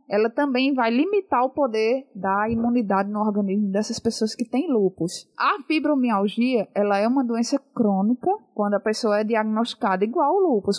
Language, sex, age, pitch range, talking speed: Portuguese, female, 20-39, 210-260 Hz, 165 wpm